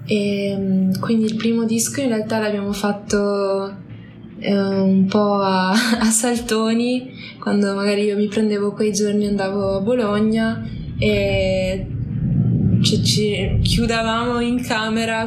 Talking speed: 120 wpm